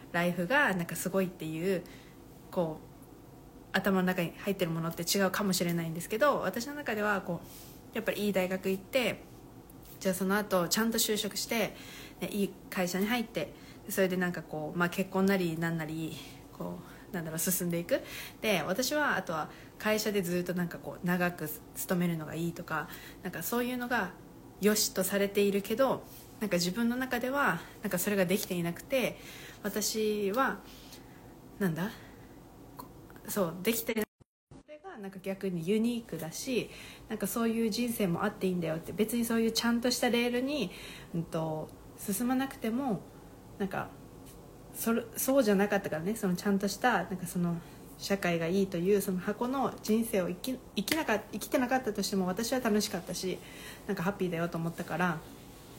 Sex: female